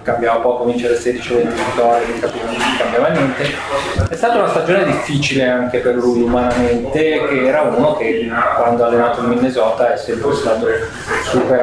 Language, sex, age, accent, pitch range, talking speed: Italian, male, 20-39, native, 120-140 Hz, 160 wpm